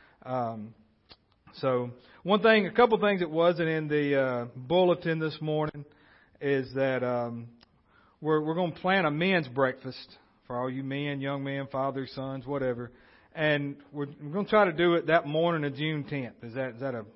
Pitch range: 125-150 Hz